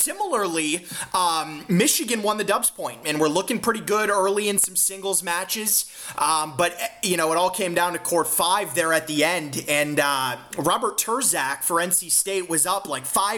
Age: 30-49